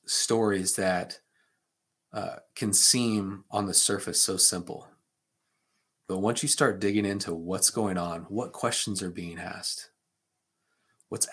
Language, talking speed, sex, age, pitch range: English, 130 wpm, male, 30-49, 95-115 Hz